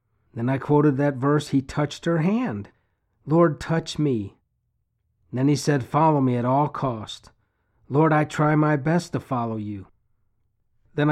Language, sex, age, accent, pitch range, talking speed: English, male, 50-69, American, 115-155 Hz, 160 wpm